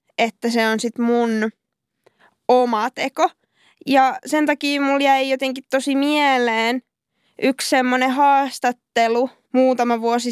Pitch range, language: 240-275 Hz, Finnish